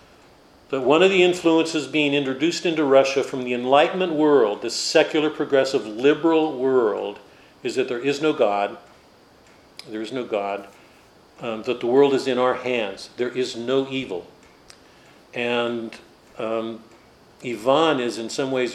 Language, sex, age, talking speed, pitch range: English, male, 50-69, 150 wpm, 110-140 Hz